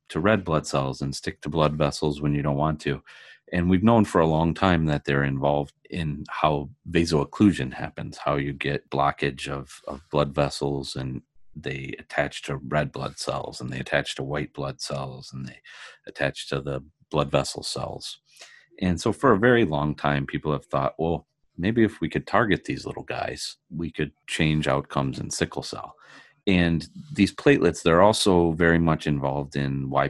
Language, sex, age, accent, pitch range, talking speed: English, male, 40-59, American, 70-80 Hz, 185 wpm